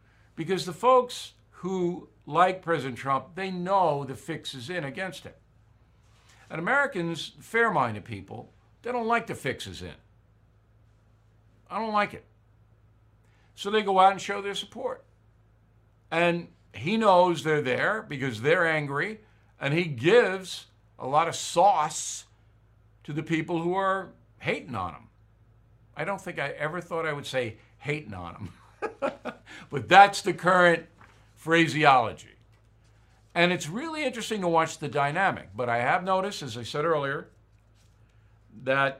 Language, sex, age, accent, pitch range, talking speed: English, male, 60-79, American, 110-165 Hz, 145 wpm